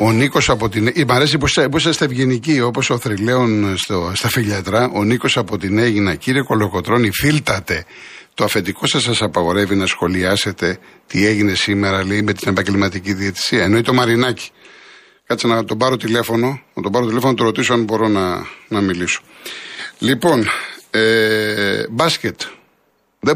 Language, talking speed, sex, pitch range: Greek, 160 wpm, male, 100-130 Hz